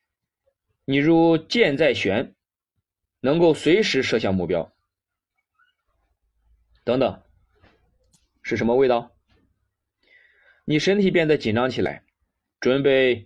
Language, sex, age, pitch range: Chinese, male, 20-39, 105-165 Hz